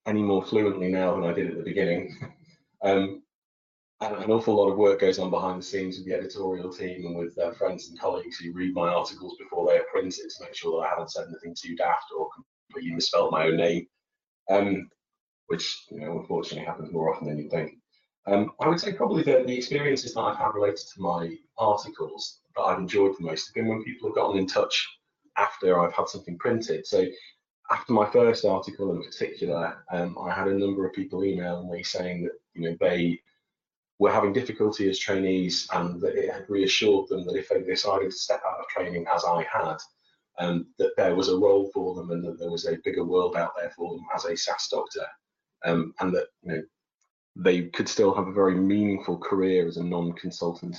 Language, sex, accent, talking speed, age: English, male, British, 215 wpm, 30-49